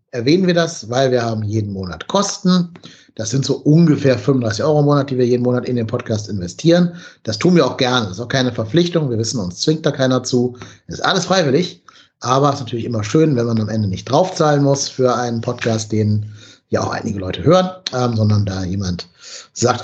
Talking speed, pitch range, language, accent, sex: 225 wpm, 115-145 Hz, German, German, male